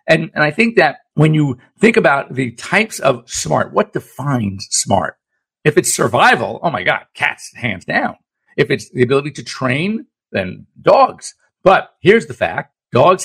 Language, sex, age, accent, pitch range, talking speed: English, male, 50-69, American, 115-160 Hz, 170 wpm